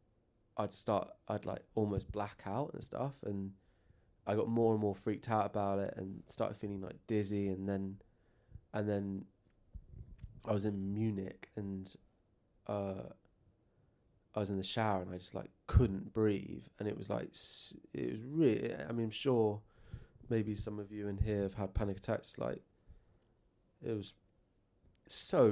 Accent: British